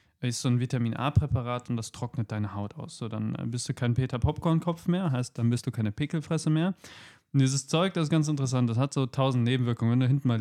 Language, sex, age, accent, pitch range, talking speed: German, male, 20-39, German, 125-150 Hz, 230 wpm